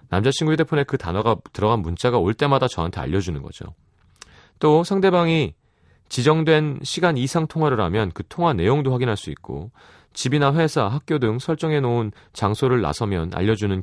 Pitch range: 100-140 Hz